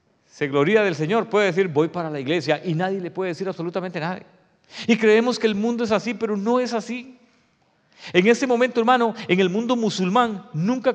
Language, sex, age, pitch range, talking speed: English, male, 40-59, 190-235 Hz, 195 wpm